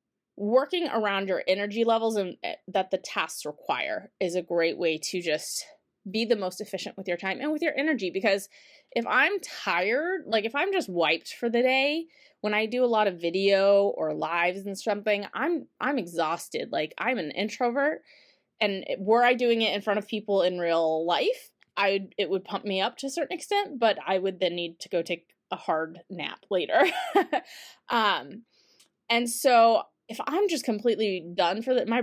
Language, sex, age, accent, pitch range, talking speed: English, female, 20-39, American, 180-250 Hz, 190 wpm